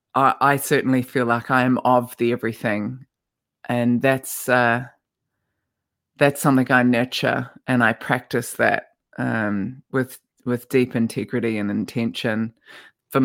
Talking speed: 125 wpm